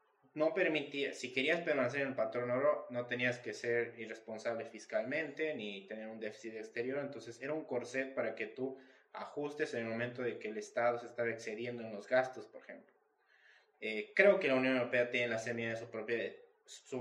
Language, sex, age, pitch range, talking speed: Spanish, male, 20-39, 115-145 Hz, 200 wpm